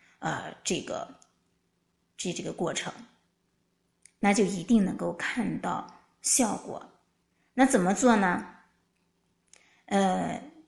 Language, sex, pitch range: Chinese, female, 210-290 Hz